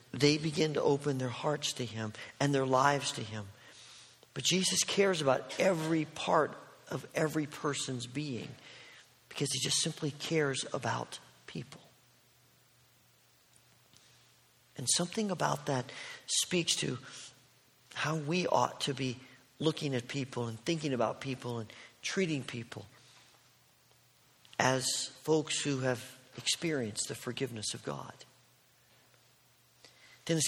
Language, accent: English, American